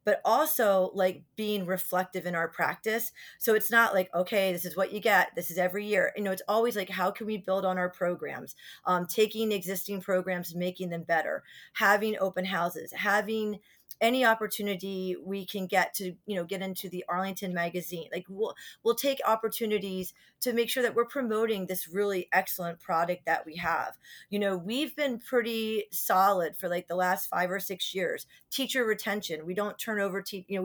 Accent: American